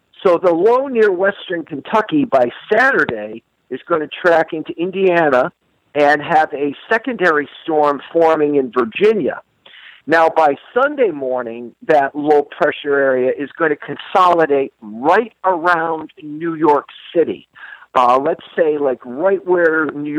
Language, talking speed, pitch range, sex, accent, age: English, 135 wpm, 135-180 Hz, male, American, 50-69